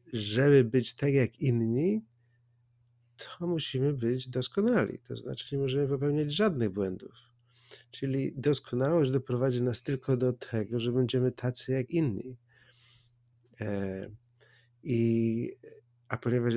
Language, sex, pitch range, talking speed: Polish, male, 110-130 Hz, 110 wpm